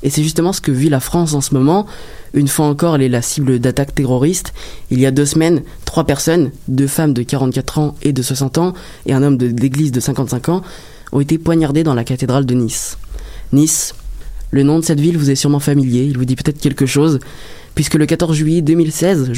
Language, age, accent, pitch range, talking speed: French, 20-39, French, 130-155 Hz, 225 wpm